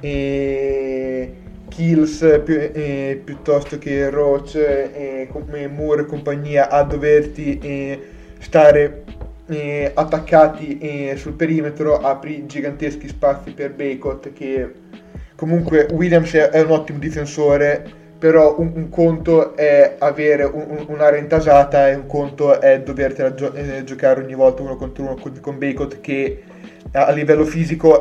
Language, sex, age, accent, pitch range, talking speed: Italian, male, 20-39, native, 140-155 Hz, 135 wpm